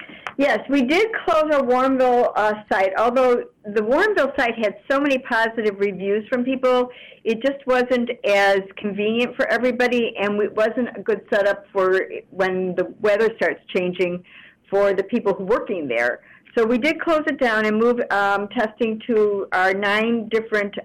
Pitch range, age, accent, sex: 195-240 Hz, 50-69, American, female